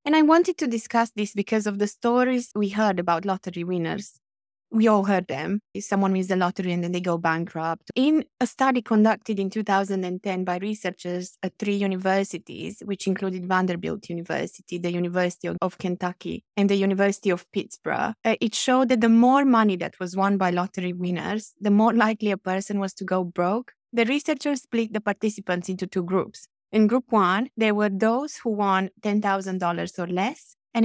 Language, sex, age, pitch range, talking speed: English, female, 20-39, 185-220 Hz, 185 wpm